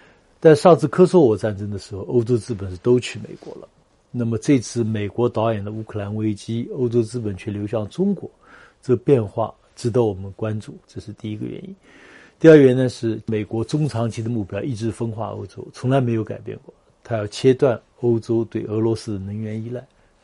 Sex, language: male, Chinese